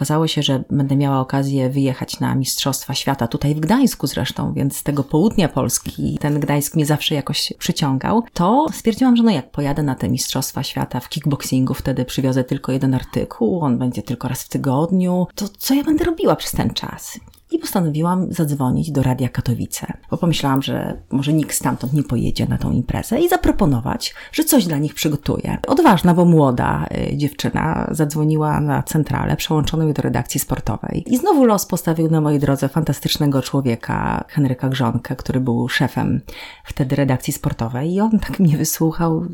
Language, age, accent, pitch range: Polish, 30-49, native, 135-190 Hz